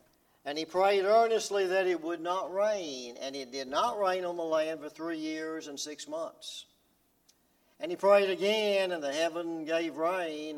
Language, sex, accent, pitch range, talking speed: English, male, American, 145-215 Hz, 180 wpm